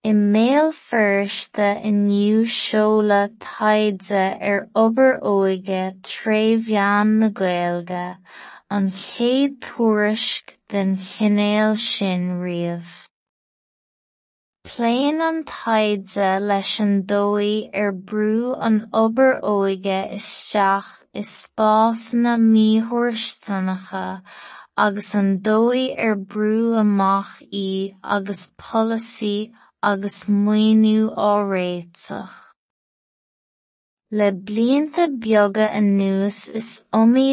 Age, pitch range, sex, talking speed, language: 20-39, 195-220 Hz, female, 80 wpm, English